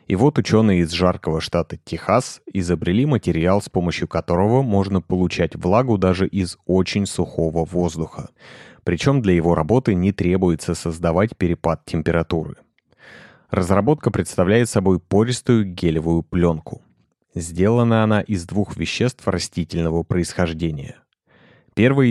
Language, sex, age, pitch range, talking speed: Russian, male, 30-49, 85-105 Hz, 115 wpm